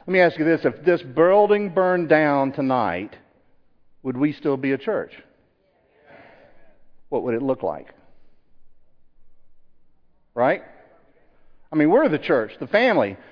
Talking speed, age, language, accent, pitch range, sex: 135 wpm, 50-69, English, American, 135-180 Hz, male